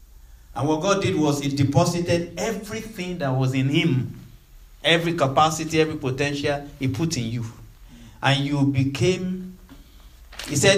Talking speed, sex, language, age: 140 wpm, male, English, 50-69